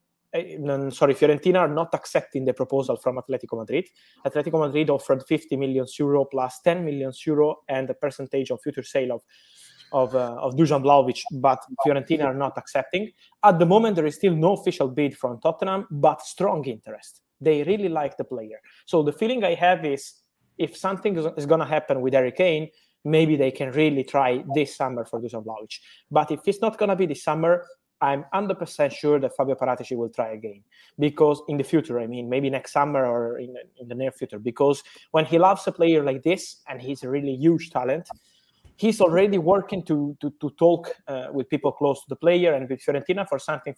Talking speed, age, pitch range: 200 wpm, 20-39, 130-165 Hz